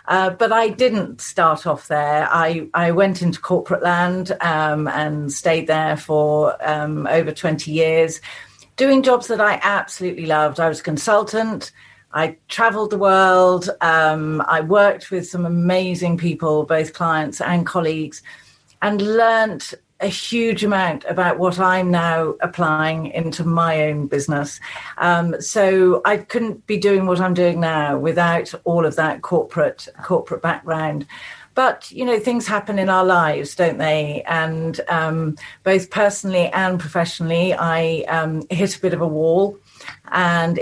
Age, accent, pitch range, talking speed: 40-59, British, 160-195 Hz, 160 wpm